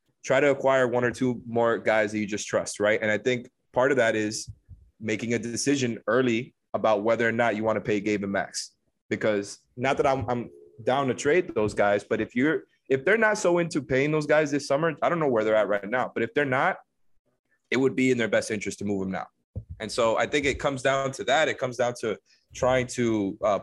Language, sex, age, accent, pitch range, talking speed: English, male, 20-39, American, 110-135 Hz, 245 wpm